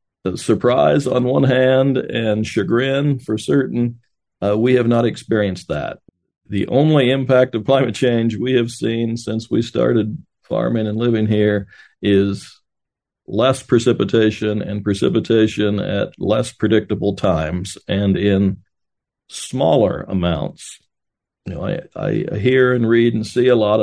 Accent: American